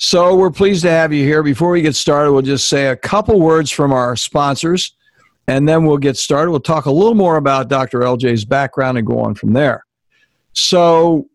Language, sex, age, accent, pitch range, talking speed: English, male, 60-79, American, 130-160 Hz, 210 wpm